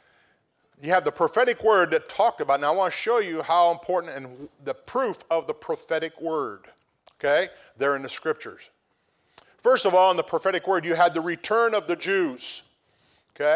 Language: English